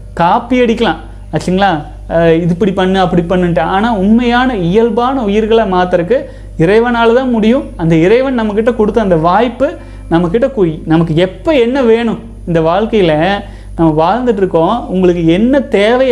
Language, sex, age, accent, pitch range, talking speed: Tamil, male, 30-49, native, 175-240 Hz, 130 wpm